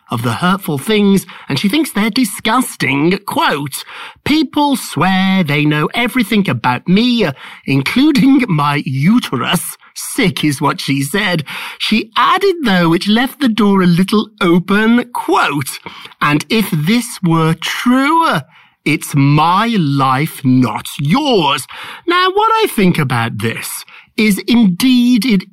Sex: male